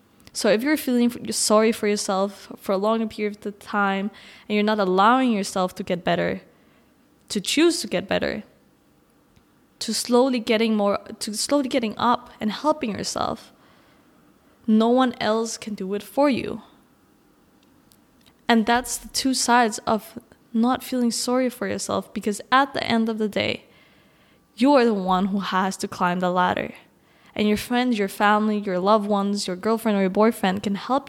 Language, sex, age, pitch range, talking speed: English, female, 10-29, 205-245 Hz, 170 wpm